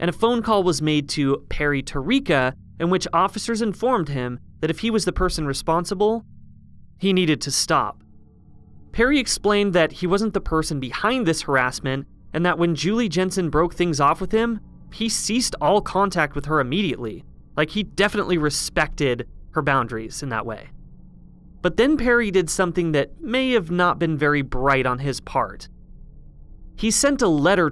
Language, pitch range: English, 140-185 Hz